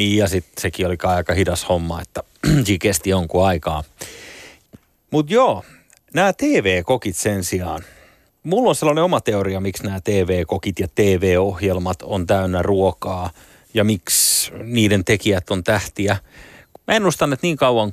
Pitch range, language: 90-110 Hz, Finnish